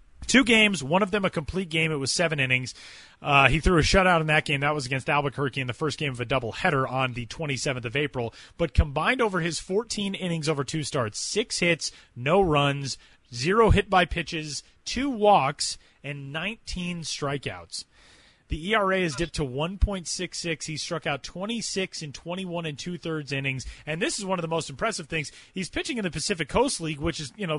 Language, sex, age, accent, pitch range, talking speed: English, male, 30-49, American, 145-190 Hz, 200 wpm